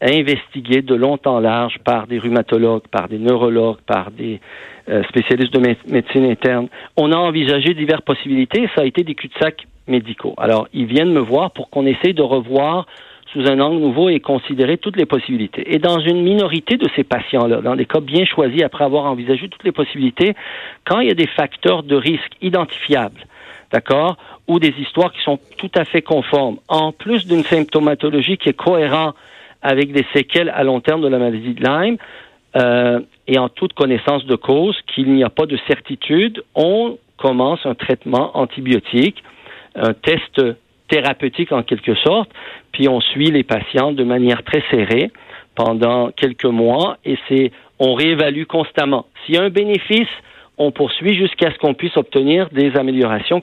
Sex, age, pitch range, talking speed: male, 50-69, 130-165 Hz, 180 wpm